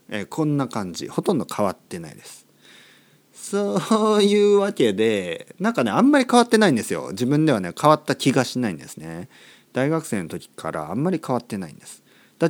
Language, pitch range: Japanese, 140-230 Hz